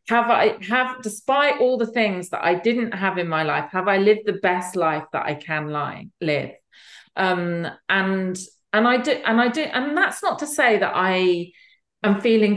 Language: English